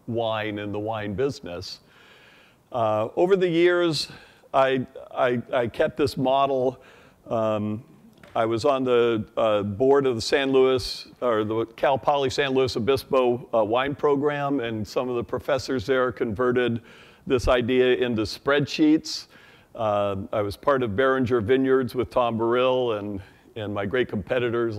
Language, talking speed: English, 150 wpm